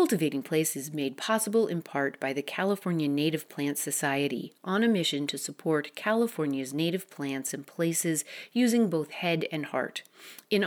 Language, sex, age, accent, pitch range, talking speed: English, female, 40-59, American, 150-200 Hz, 165 wpm